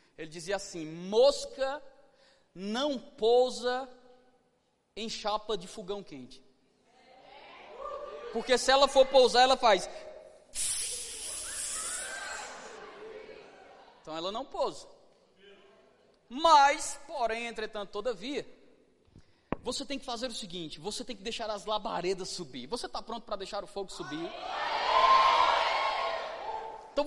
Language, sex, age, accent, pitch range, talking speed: Portuguese, male, 20-39, Brazilian, 190-265 Hz, 105 wpm